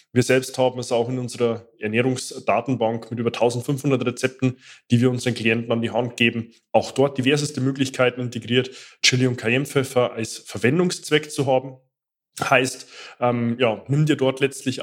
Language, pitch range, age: German, 120-140 Hz, 20-39